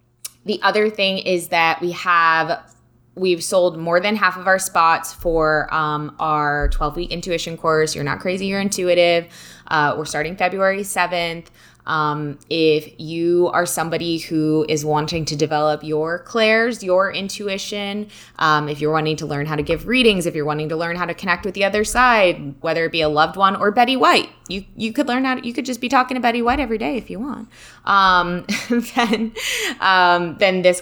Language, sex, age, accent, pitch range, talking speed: English, female, 20-39, American, 150-190 Hz, 195 wpm